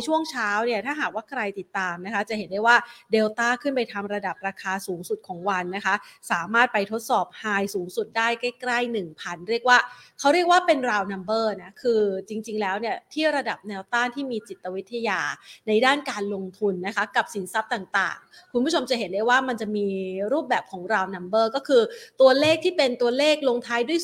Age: 30-49